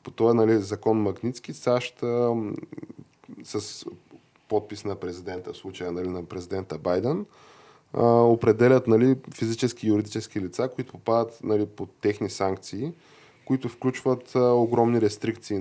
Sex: male